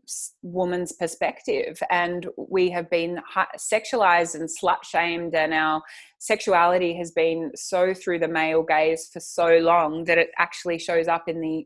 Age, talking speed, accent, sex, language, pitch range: 20-39, 155 wpm, Australian, female, English, 160-180 Hz